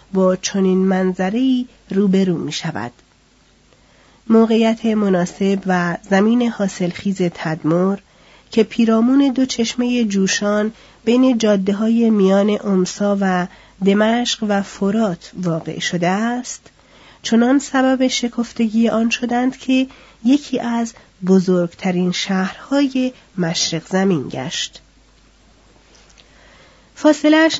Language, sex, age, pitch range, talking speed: Persian, female, 40-59, 190-235 Hz, 90 wpm